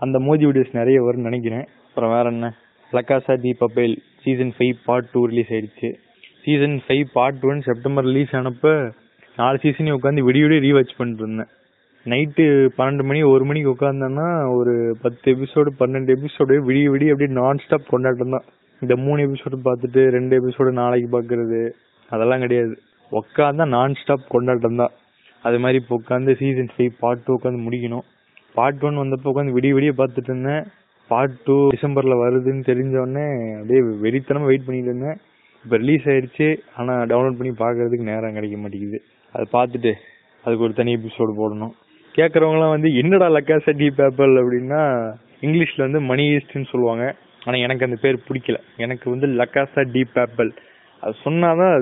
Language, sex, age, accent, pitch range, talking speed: Tamil, male, 20-39, native, 120-140 Hz, 90 wpm